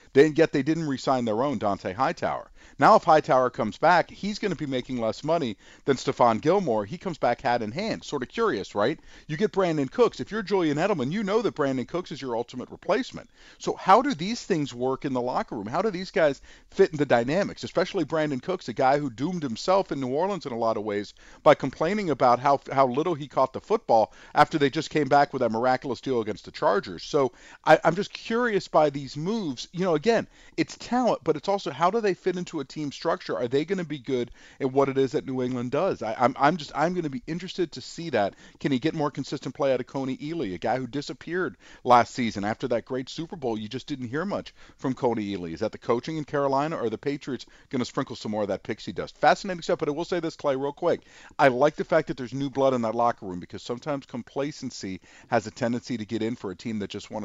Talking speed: 255 wpm